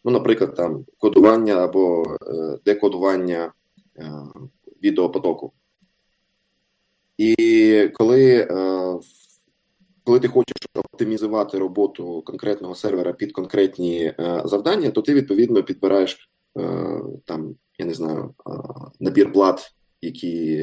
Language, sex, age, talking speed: Ukrainian, male, 20-39, 85 wpm